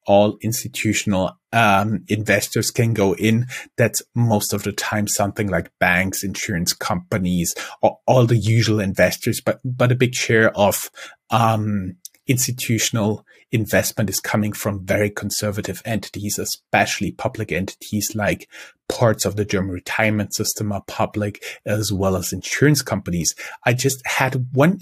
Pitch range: 105-125 Hz